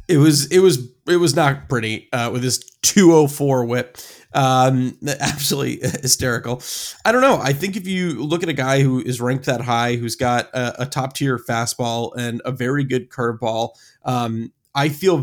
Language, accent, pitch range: English, American, 120-140 Hz